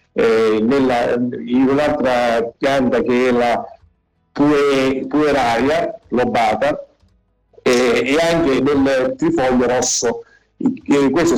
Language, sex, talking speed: Italian, male, 95 wpm